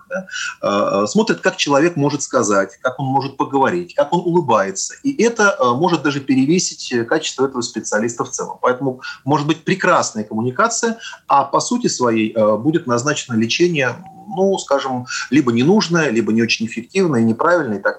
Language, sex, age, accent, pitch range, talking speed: Russian, male, 30-49, native, 115-195 Hz, 150 wpm